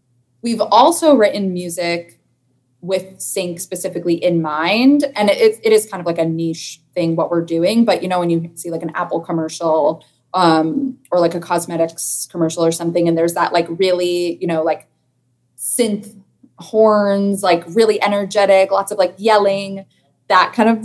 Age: 20-39